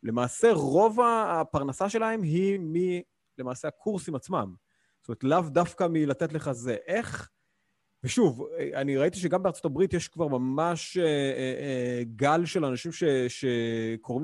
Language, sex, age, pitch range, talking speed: Hebrew, male, 30-49, 120-170 Hz, 140 wpm